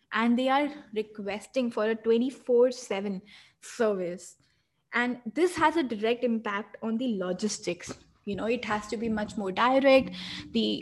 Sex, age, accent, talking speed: female, 20-39, Indian, 150 wpm